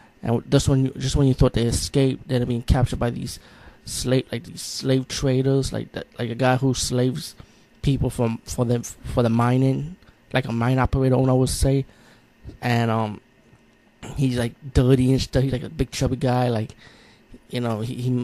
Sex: male